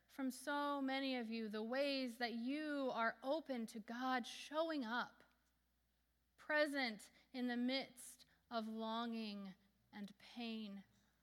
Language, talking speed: English, 125 wpm